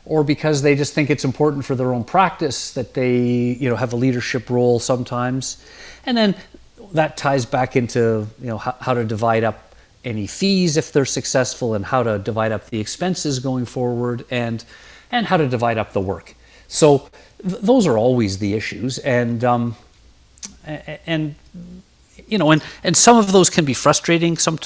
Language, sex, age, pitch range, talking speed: English, male, 40-59, 120-150 Hz, 185 wpm